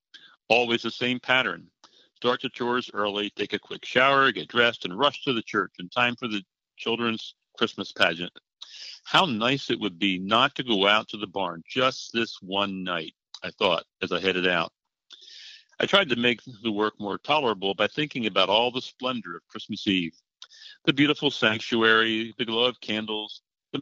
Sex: male